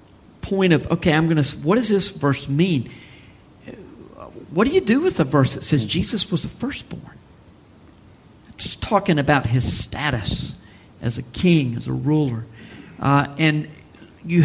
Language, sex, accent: English, male, American